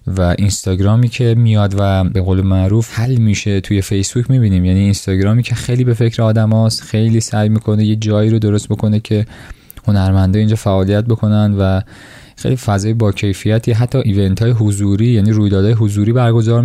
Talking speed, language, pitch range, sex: 170 wpm, Persian, 95-115 Hz, male